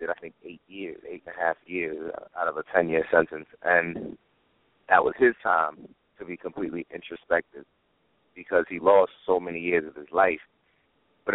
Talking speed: 180 wpm